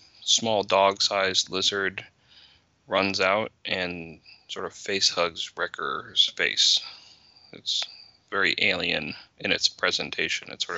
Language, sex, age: English, male, 20-39